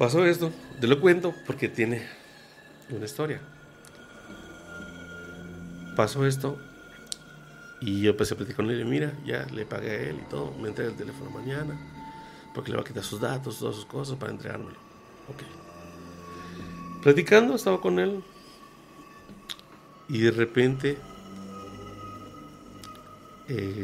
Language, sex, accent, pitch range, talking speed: Spanish, male, Mexican, 95-140 Hz, 135 wpm